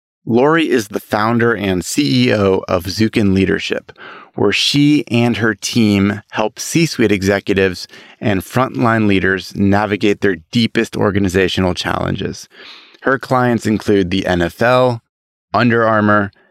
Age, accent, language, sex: 30-49, American, English, male